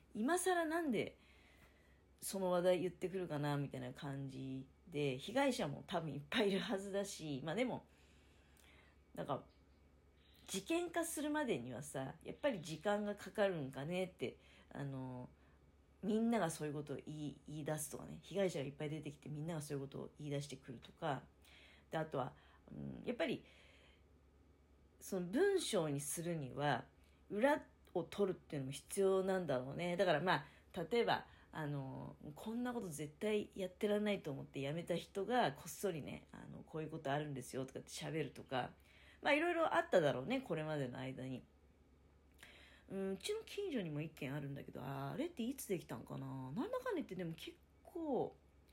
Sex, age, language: female, 40-59, Japanese